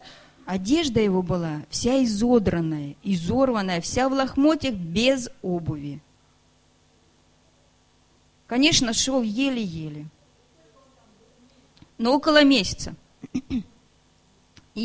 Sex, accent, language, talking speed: female, native, Russian, 75 wpm